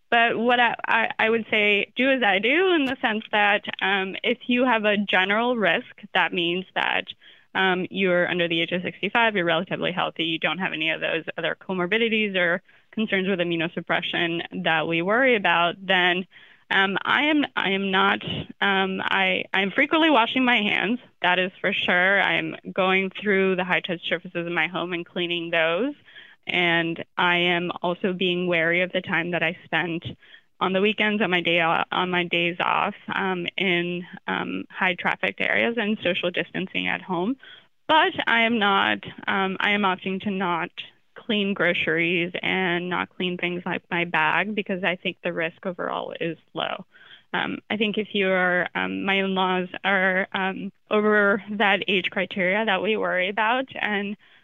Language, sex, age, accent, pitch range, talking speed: English, female, 10-29, American, 175-210 Hz, 180 wpm